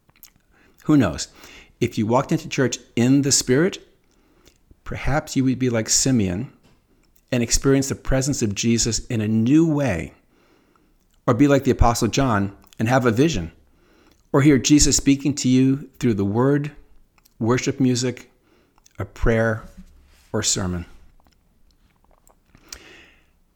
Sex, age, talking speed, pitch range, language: male, 50-69, 130 wpm, 100-130 Hz, English